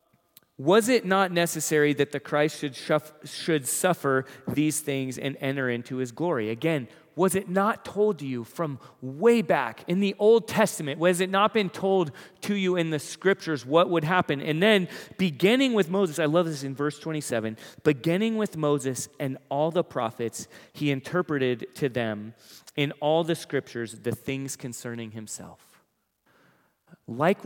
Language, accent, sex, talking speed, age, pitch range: English, American, male, 160 wpm, 30-49, 135-180 Hz